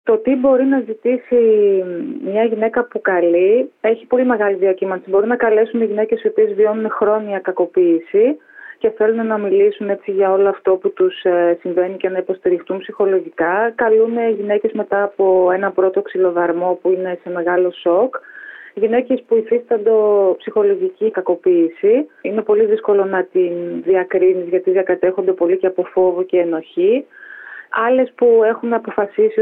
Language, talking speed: Greek, 145 wpm